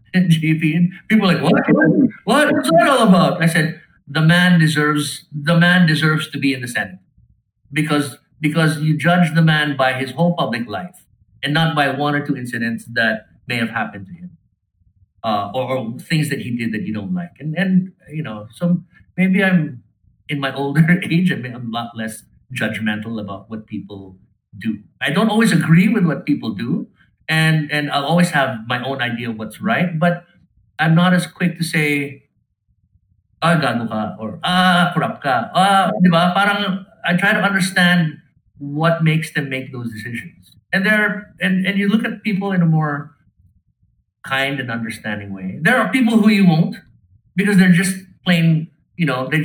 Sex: male